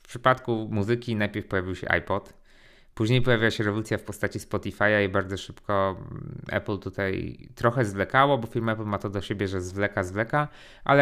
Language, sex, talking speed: Polish, male, 175 wpm